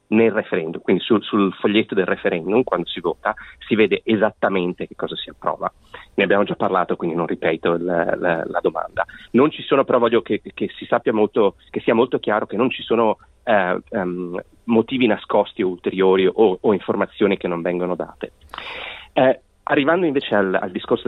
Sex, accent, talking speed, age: male, native, 190 wpm, 30-49